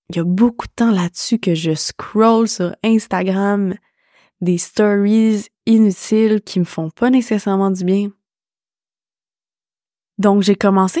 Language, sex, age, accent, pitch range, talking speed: French, female, 20-39, Canadian, 180-220 Hz, 140 wpm